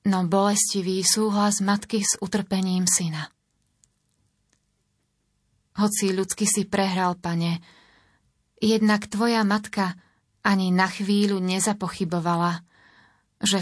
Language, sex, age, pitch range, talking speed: Slovak, female, 30-49, 180-205 Hz, 90 wpm